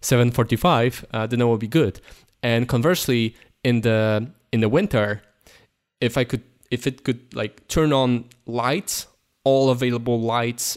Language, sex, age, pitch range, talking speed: English, male, 20-39, 115-140 Hz, 150 wpm